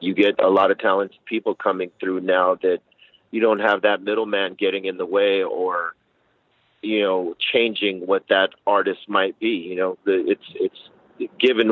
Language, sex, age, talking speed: English, male, 40-59, 180 wpm